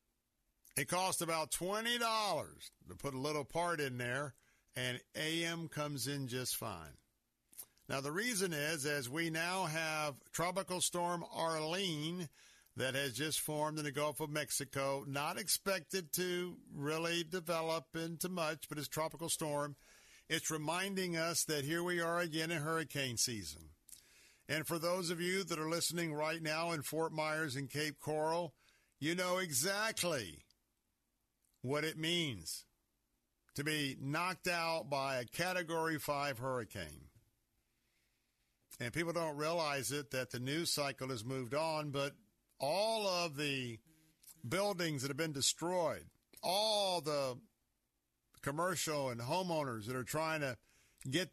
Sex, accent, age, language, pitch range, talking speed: male, American, 50-69, English, 135-170 Hz, 140 wpm